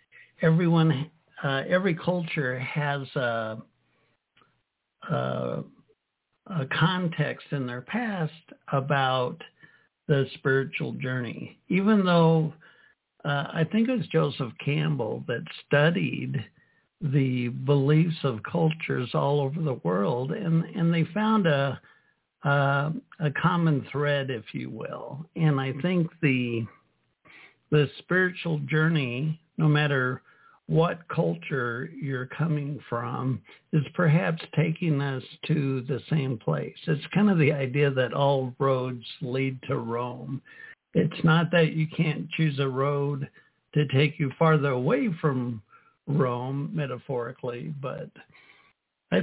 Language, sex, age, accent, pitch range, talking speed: English, male, 60-79, American, 135-165 Hz, 120 wpm